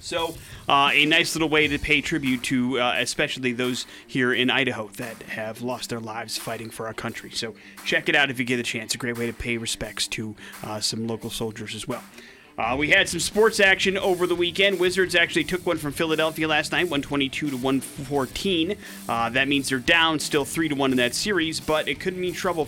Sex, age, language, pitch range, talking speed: male, 30-49, English, 120-155 Hz, 210 wpm